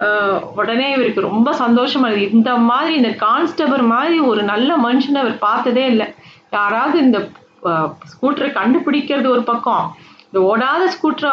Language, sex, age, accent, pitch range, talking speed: Tamil, female, 30-49, native, 220-270 Hz, 125 wpm